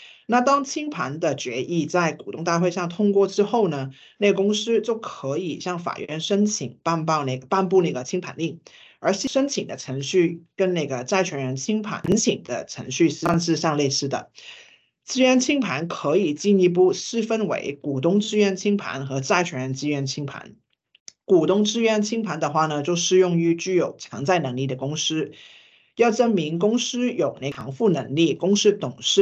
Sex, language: male, English